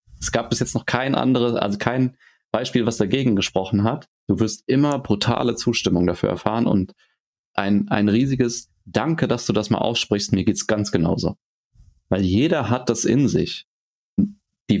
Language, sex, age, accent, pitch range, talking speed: German, male, 30-49, German, 105-130 Hz, 175 wpm